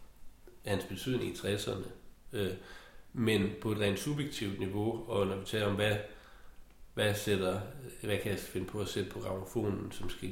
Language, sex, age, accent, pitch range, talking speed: Danish, male, 60-79, native, 100-120 Hz, 180 wpm